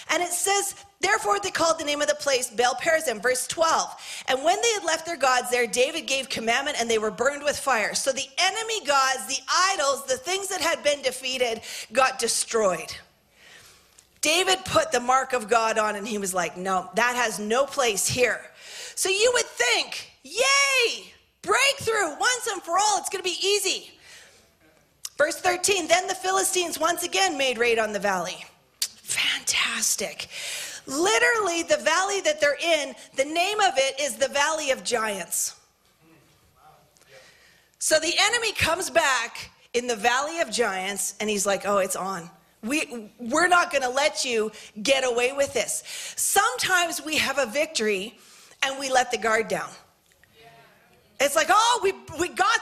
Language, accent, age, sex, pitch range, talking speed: English, American, 40-59, female, 245-370 Hz, 170 wpm